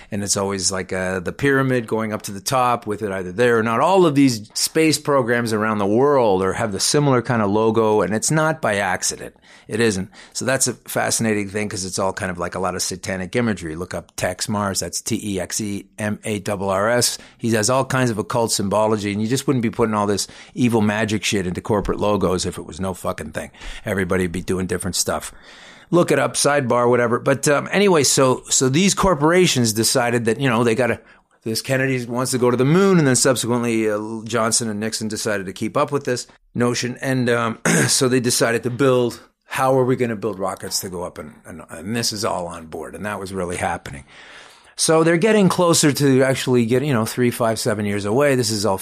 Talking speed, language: 225 wpm, English